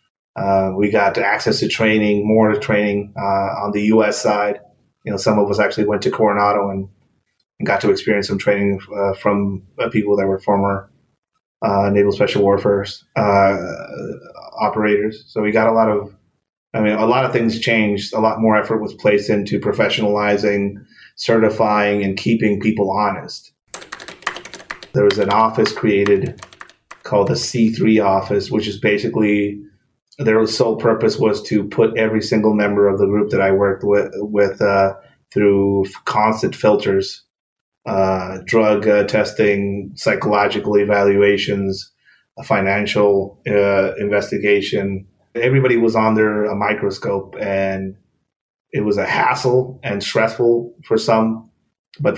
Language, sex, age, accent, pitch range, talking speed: English, male, 30-49, American, 100-110 Hz, 145 wpm